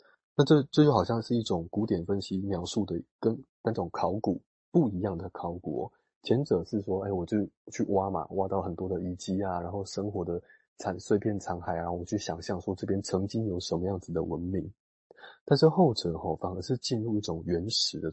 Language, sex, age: Chinese, male, 20-39